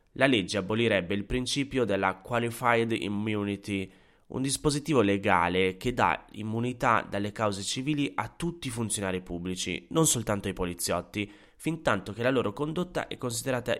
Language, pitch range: Italian, 95-120 Hz